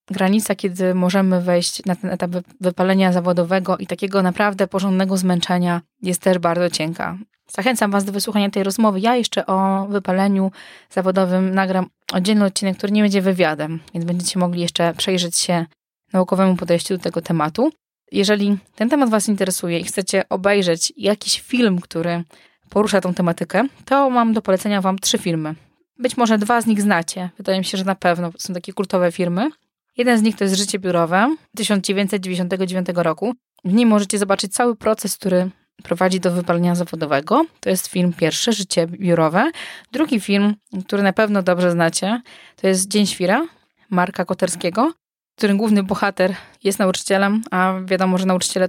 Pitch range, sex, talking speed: 180-205 Hz, female, 165 wpm